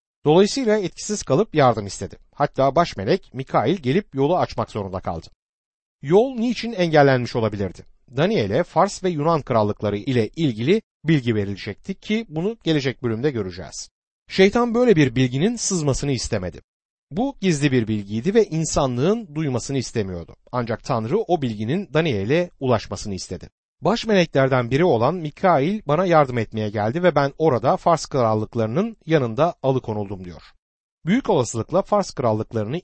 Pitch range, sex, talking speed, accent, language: 110-180 Hz, male, 135 wpm, native, Turkish